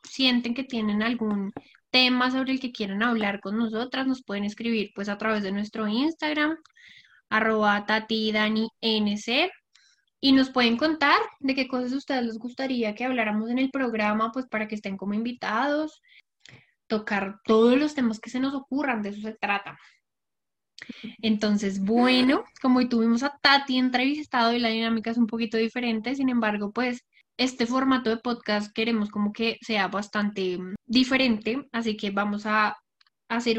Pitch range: 215-255 Hz